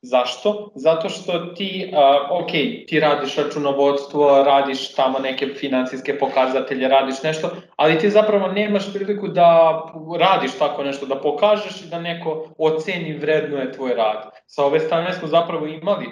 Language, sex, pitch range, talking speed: Croatian, male, 135-160 Hz, 155 wpm